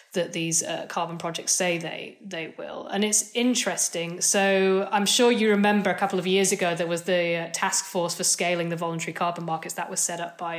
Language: English